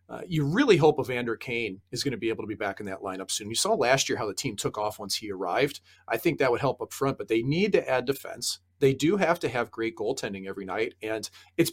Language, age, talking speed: English, 40-59, 275 wpm